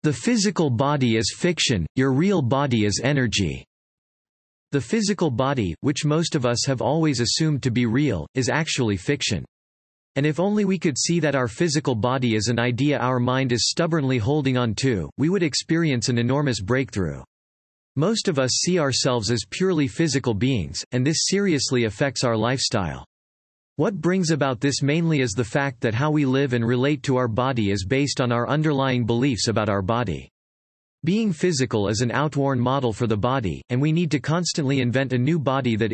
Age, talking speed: 40-59, 185 wpm